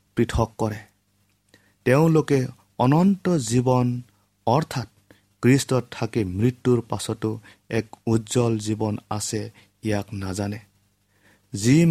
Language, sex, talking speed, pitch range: English, male, 105 wpm, 100-120 Hz